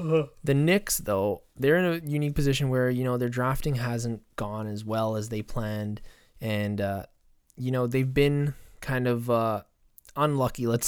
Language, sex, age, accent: English, male, 20-39, American